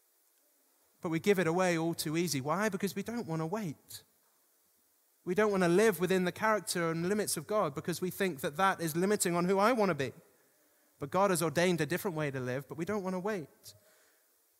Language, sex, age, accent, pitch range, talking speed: English, male, 30-49, British, 150-190 Hz, 225 wpm